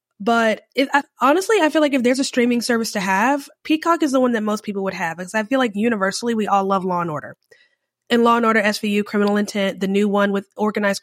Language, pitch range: English, 205-270 Hz